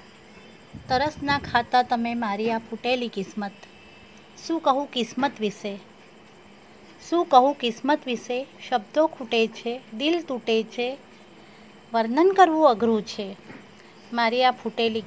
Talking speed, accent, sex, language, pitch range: 95 wpm, native, female, Gujarati, 220-275 Hz